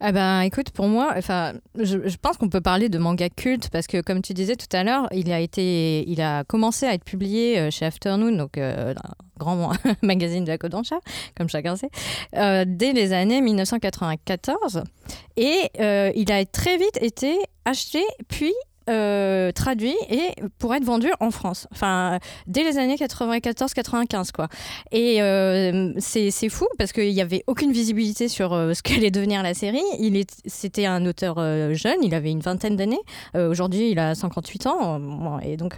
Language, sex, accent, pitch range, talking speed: French, female, French, 180-235 Hz, 185 wpm